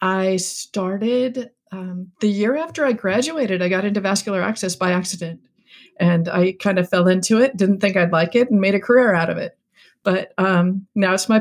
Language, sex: English, female